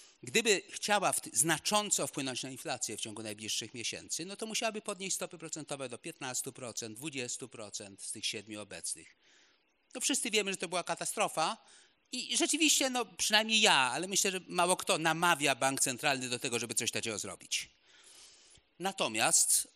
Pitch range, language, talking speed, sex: 125-205 Hz, Polish, 160 wpm, male